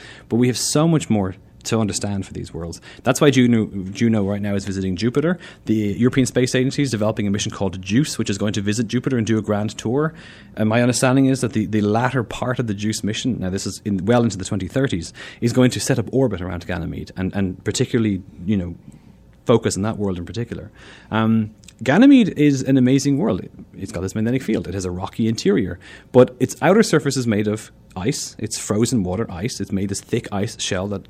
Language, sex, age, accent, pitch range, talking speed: English, male, 30-49, Irish, 100-130 Hz, 225 wpm